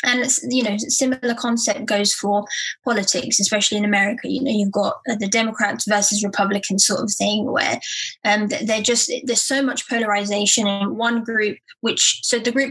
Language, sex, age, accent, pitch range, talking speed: English, female, 20-39, British, 205-240 Hz, 175 wpm